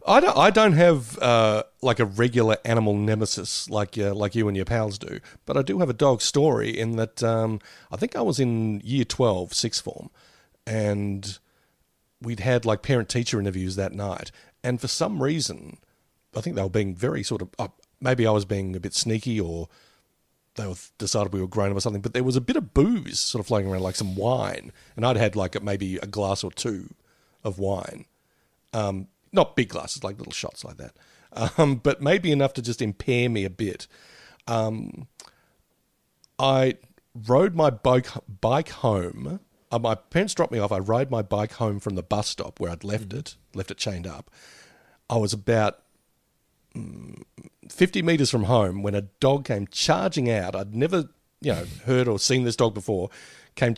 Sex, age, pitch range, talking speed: male, 40-59, 100-130 Hz, 190 wpm